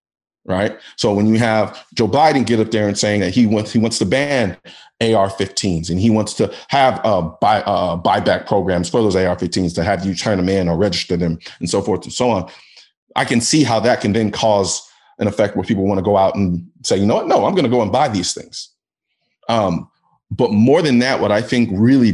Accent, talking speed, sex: American, 235 wpm, male